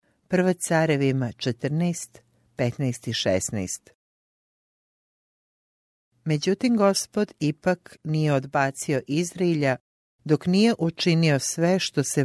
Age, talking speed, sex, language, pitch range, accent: 50-69, 90 wpm, female, English, 130-165 Hz, Croatian